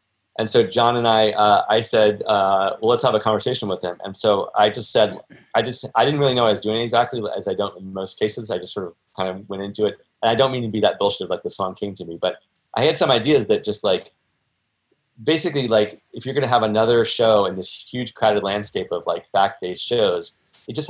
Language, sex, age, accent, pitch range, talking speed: English, male, 20-39, American, 100-125 Hz, 260 wpm